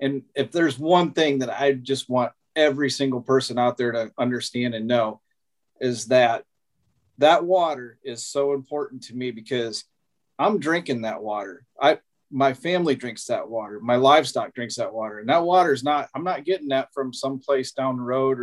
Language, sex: English, male